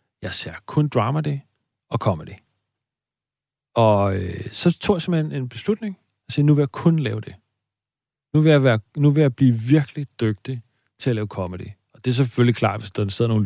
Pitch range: 110-140 Hz